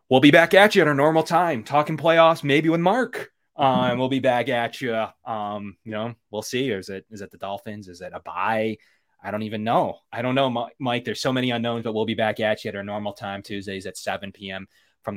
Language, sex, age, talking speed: English, male, 20-39, 250 wpm